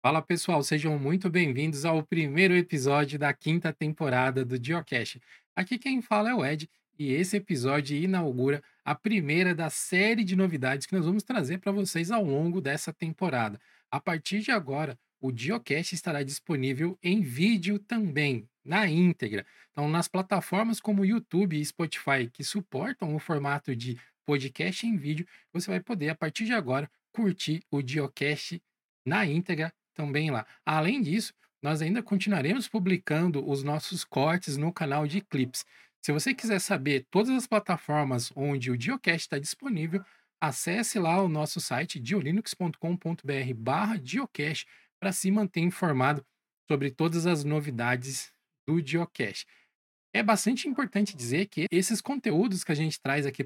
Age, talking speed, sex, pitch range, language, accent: 20-39, 150 wpm, male, 145-195 Hz, Portuguese, Brazilian